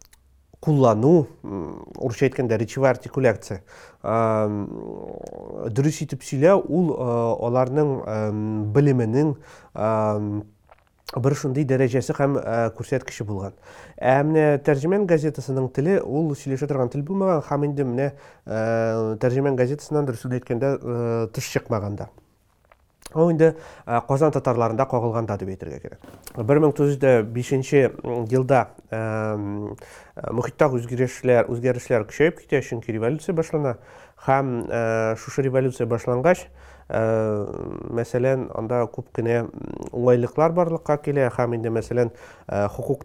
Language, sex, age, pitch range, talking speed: English, male, 30-49, 110-140 Hz, 80 wpm